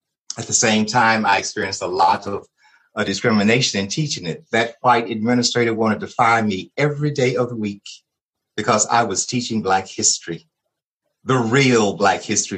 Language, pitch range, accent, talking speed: English, 110-170 Hz, American, 170 wpm